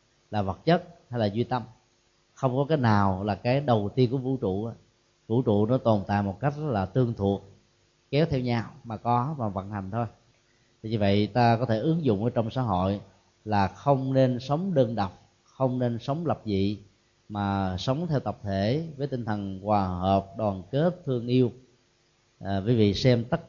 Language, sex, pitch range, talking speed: Vietnamese, male, 105-125 Hz, 195 wpm